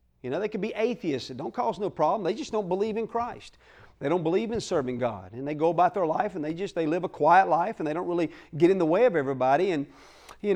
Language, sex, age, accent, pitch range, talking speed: English, male, 40-59, American, 145-210 Hz, 280 wpm